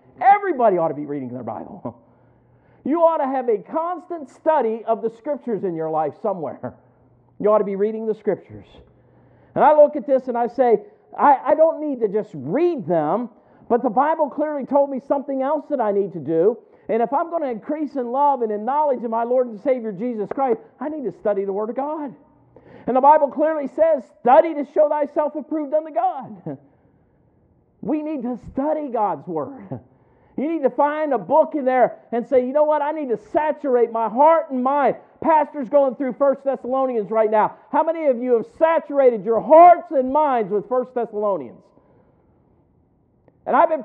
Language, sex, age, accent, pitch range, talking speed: English, male, 50-69, American, 215-300 Hz, 200 wpm